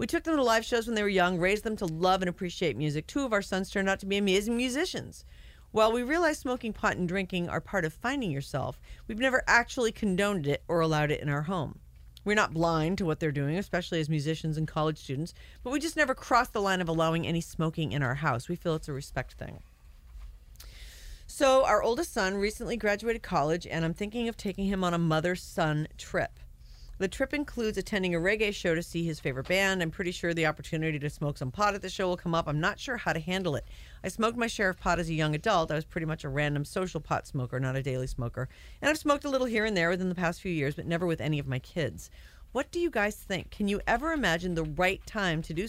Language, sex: English, female